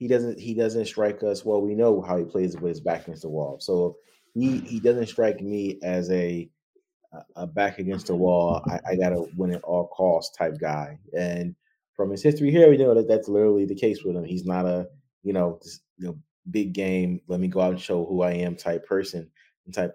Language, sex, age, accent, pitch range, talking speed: English, male, 20-39, American, 85-105 Hz, 230 wpm